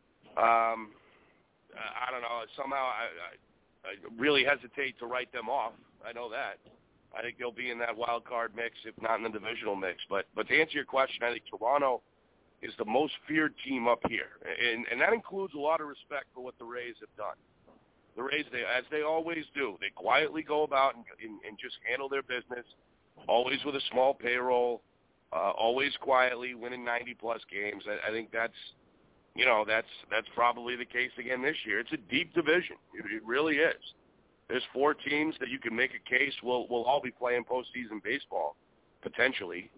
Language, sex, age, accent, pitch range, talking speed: English, male, 40-59, American, 115-135 Hz, 195 wpm